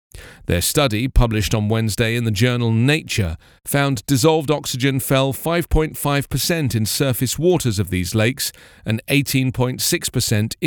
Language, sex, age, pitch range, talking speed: English, male, 40-59, 105-145 Hz, 125 wpm